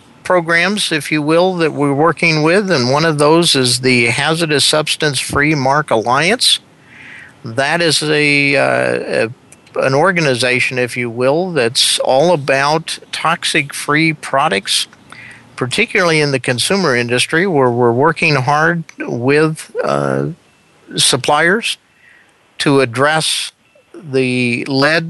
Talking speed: 115 wpm